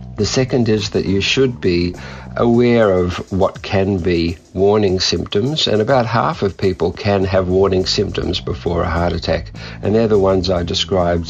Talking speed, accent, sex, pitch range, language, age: 175 wpm, Australian, male, 85-100 Hz, English, 50-69